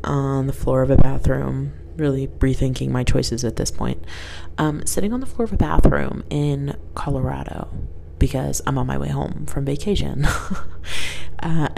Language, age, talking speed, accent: English, 20-39, 165 wpm, American